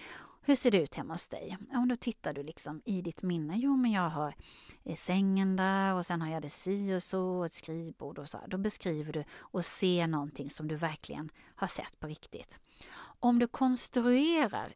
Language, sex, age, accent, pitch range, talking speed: Swedish, female, 30-49, native, 155-225 Hz, 210 wpm